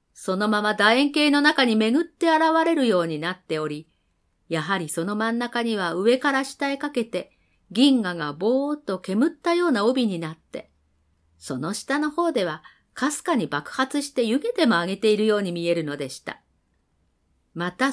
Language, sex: Japanese, female